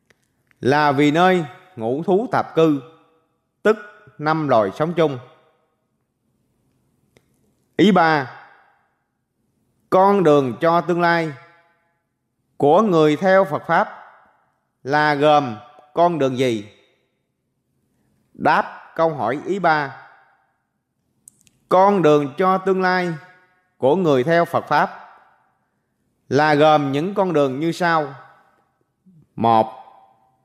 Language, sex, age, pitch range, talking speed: Vietnamese, male, 20-39, 130-180 Hz, 100 wpm